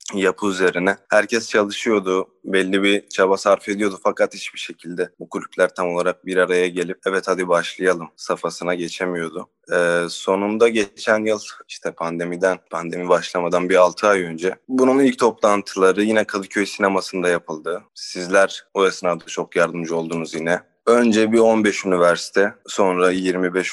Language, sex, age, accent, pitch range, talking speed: Turkish, male, 20-39, native, 85-95 Hz, 140 wpm